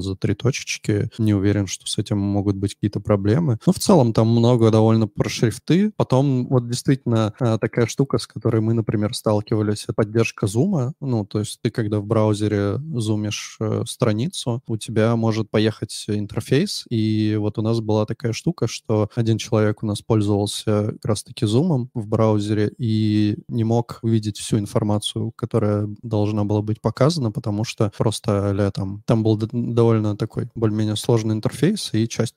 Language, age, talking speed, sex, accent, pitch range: Russian, 20-39, 165 wpm, male, native, 105-120 Hz